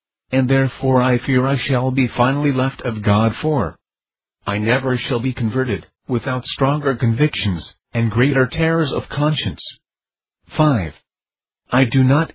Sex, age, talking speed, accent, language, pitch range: male, 50-69, 140 wpm, American, English, 115-135 Hz